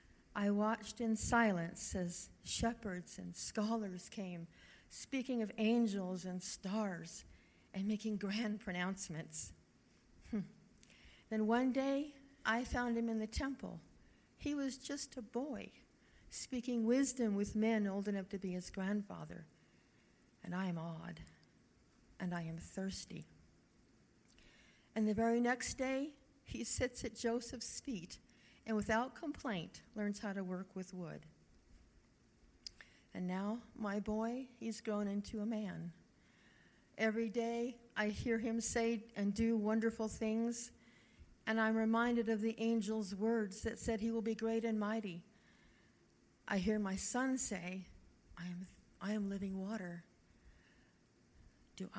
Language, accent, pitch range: English, American, 195-230 Hz